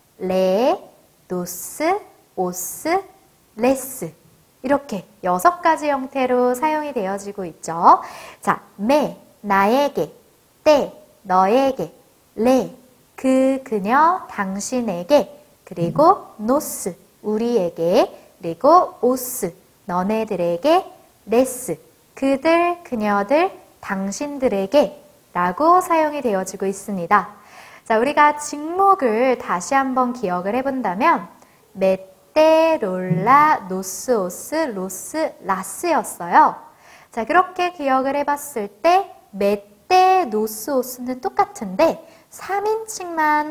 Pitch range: 200-305 Hz